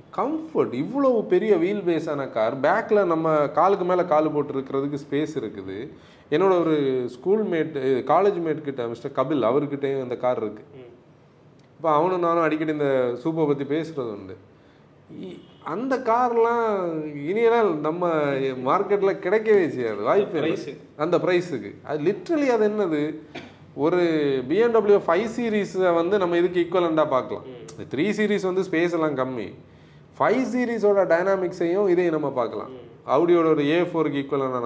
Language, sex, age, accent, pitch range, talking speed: Tamil, male, 30-49, native, 145-200 Hz, 130 wpm